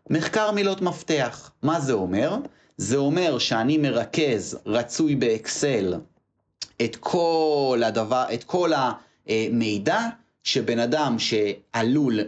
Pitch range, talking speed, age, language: 110-155 Hz, 105 wpm, 30-49, Hebrew